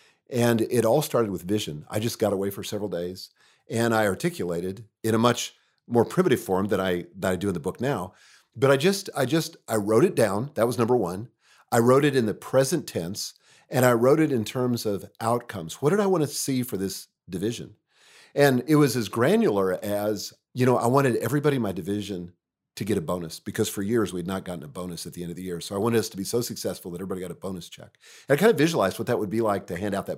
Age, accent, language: 40-59, American, English